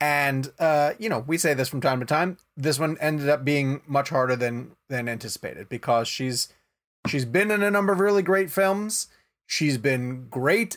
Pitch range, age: 130-155 Hz, 30-49